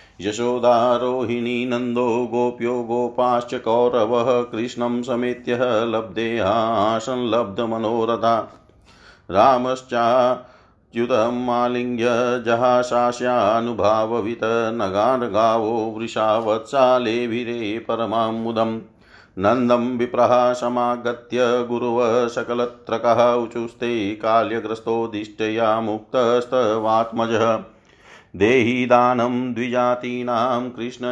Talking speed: 50 wpm